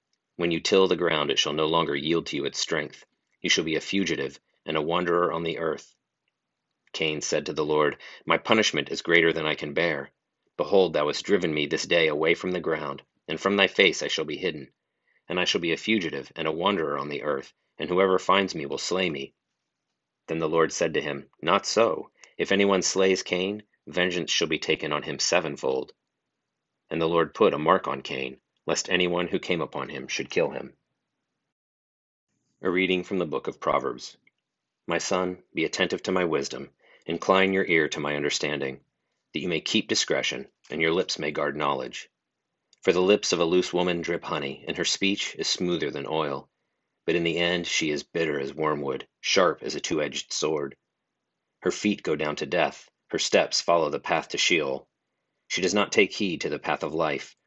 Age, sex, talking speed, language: 40-59, male, 205 wpm, English